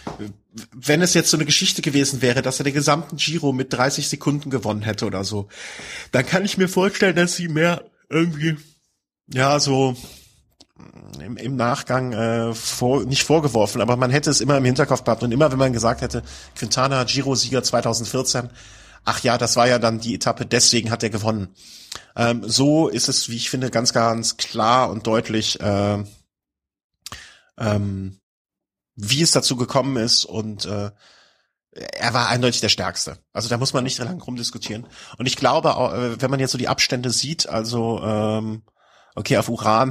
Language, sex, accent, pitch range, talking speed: German, male, German, 110-135 Hz, 175 wpm